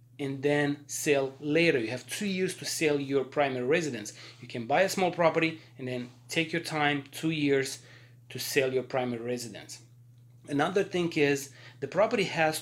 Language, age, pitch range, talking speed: English, 30-49, 125-155 Hz, 175 wpm